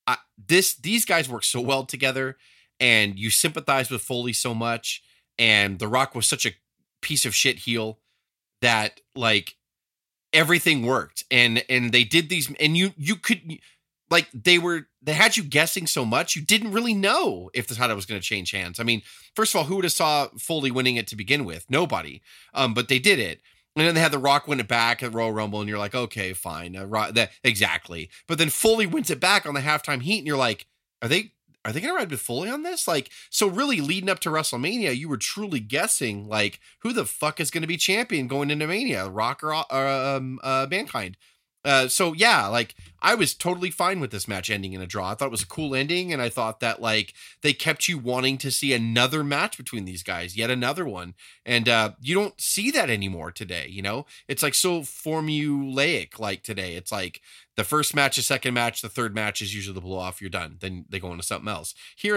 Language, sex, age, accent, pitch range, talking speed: English, male, 30-49, American, 110-155 Hz, 225 wpm